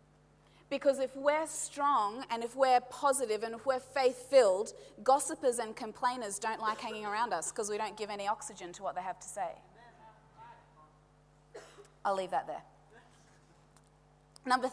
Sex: female